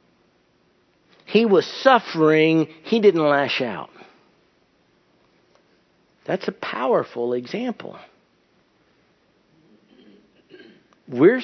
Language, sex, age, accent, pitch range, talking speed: English, male, 60-79, American, 140-200 Hz, 65 wpm